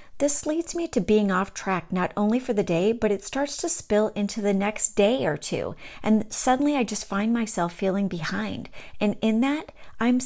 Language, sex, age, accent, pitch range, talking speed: English, female, 40-59, American, 175-230 Hz, 205 wpm